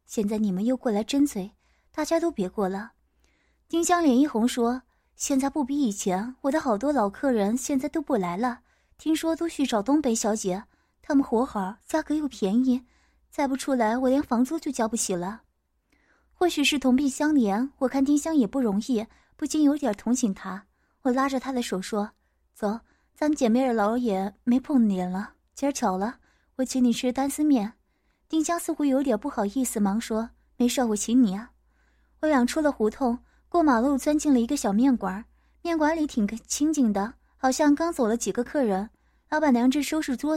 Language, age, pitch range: Chinese, 20-39, 220-290 Hz